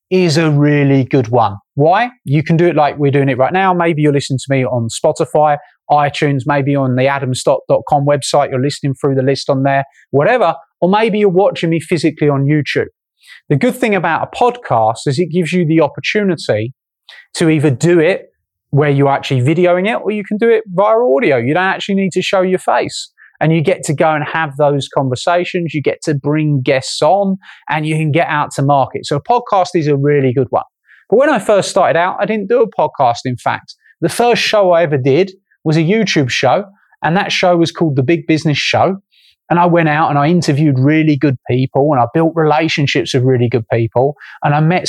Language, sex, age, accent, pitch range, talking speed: English, male, 30-49, British, 140-175 Hz, 220 wpm